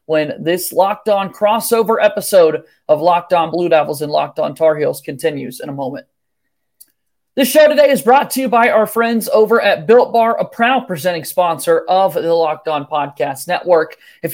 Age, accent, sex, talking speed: 30-49, American, male, 190 wpm